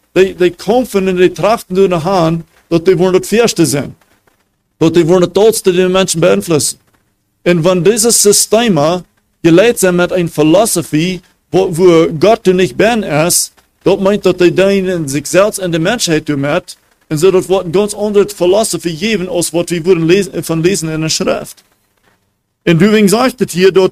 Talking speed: 180 wpm